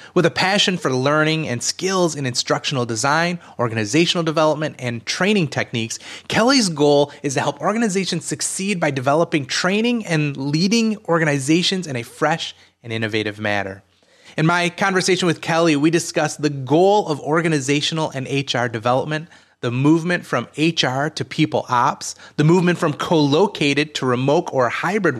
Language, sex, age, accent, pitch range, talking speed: English, male, 30-49, American, 125-170 Hz, 150 wpm